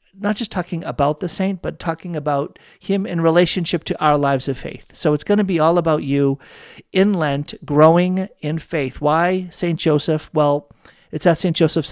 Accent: American